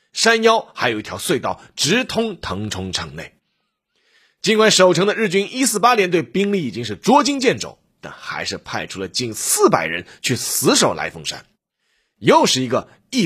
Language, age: Japanese, 30-49